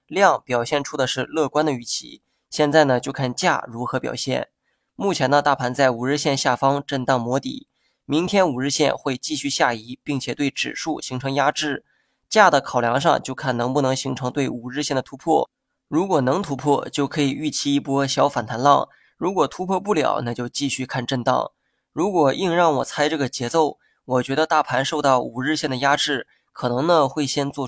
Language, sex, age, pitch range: Chinese, male, 20-39, 130-150 Hz